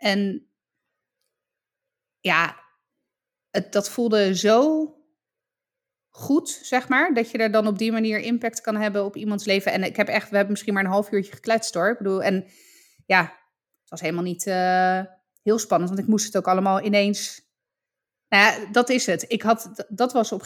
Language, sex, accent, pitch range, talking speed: Dutch, female, Dutch, 180-225 Hz, 190 wpm